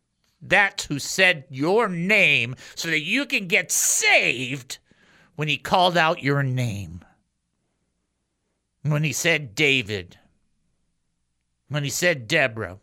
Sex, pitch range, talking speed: male, 150-235 Hz, 115 wpm